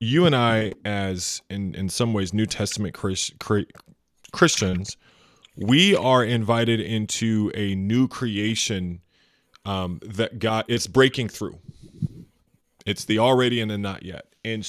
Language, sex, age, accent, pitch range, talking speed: English, male, 30-49, American, 105-135 Hz, 130 wpm